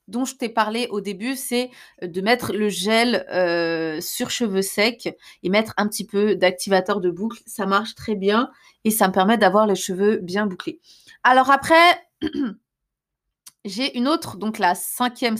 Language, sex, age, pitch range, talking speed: French, female, 20-39, 190-235 Hz, 170 wpm